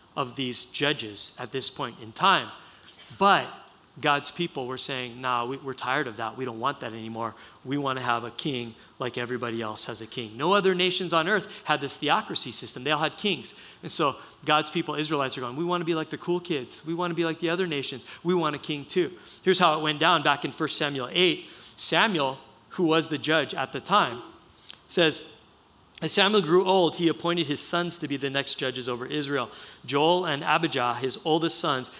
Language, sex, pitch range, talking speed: English, male, 145-195 Hz, 220 wpm